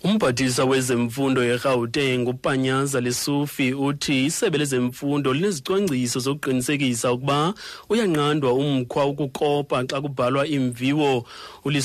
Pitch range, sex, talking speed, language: 95-145 Hz, male, 100 wpm, English